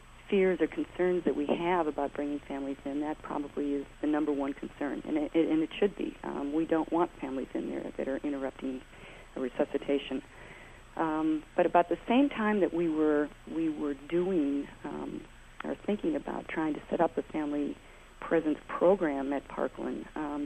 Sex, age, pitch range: female, 50-69, 145-165 Hz